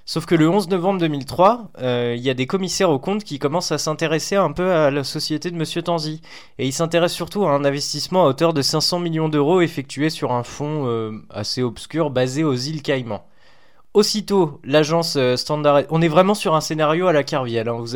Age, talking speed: 20-39, 215 wpm